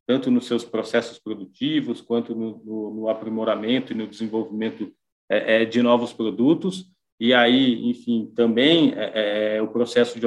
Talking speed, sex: 140 wpm, male